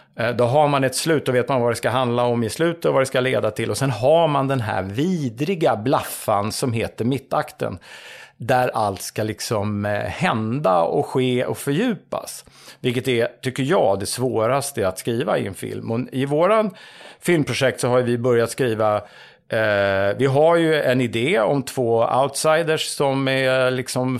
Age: 50-69